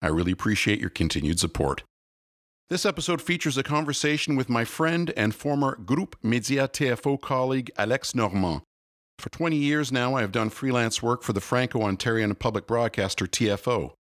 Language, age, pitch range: English, 50-69, 95-135 Hz